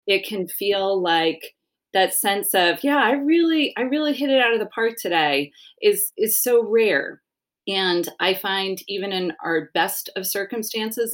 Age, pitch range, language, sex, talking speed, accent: 30-49, 165-215 Hz, English, female, 170 wpm, American